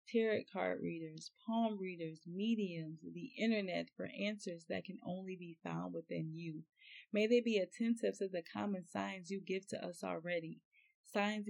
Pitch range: 175-215 Hz